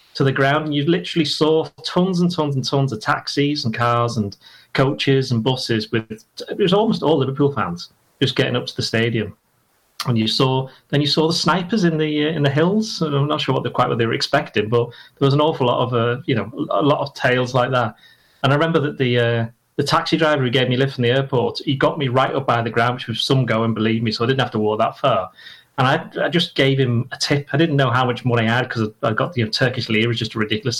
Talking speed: 275 wpm